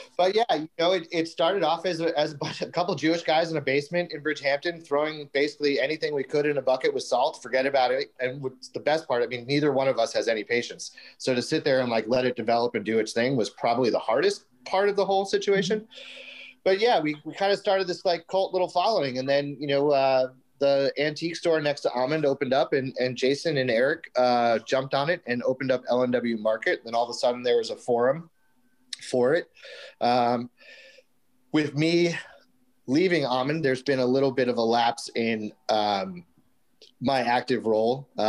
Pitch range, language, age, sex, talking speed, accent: 120-170 Hz, English, 30-49, male, 215 wpm, American